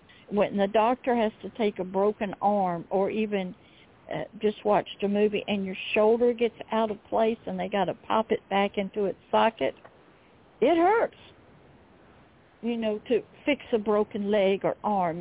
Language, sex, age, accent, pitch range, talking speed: English, female, 60-79, American, 200-240 Hz, 175 wpm